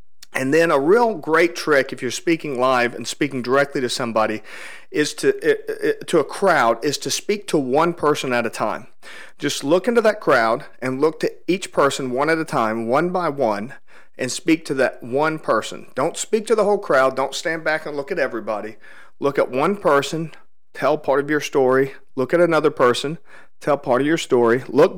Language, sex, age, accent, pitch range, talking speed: English, male, 40-59, American, 125-170 Hz, 200 wpm